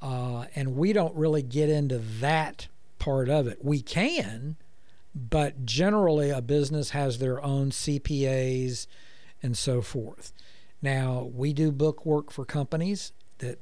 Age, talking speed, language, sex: 60-79, 140 wpm, English, male